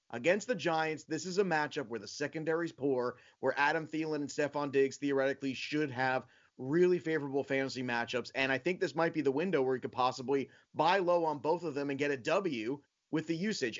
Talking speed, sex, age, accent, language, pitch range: 215 wpm, male, 30-49, American, English, 135-170 Hz